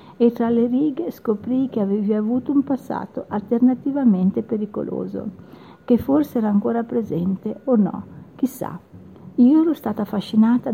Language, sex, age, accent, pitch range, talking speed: Italian, female, 50-69, native, 195-235 Hz, 135 wpm